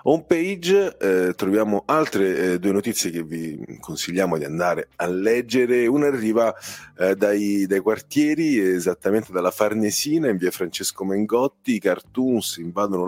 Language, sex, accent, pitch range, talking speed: Italian, male, native, 90-125 Hz, 140 wpm